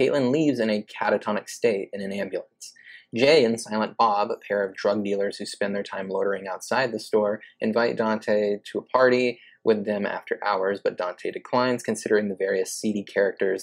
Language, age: English, 20-39